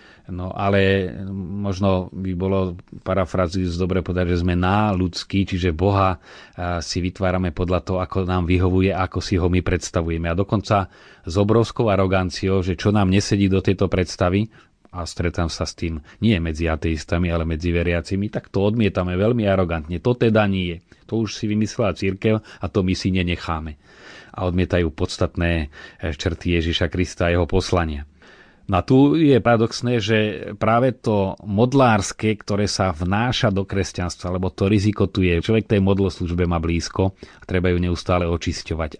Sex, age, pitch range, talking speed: male, 30-49, 90-105 Hz, 160 wpm